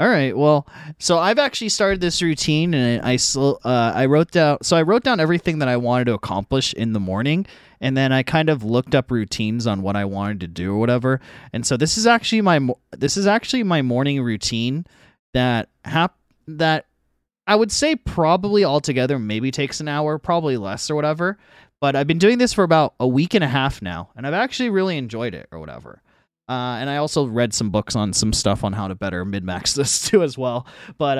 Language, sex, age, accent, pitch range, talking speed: English, male, 20-39, American, 110-155 Hz, 215 wpm